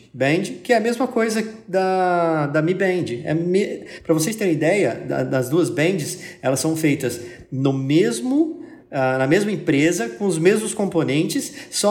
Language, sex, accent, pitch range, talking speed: Portuguese, male, Brazilian, 140-205 Hz, 170 wpm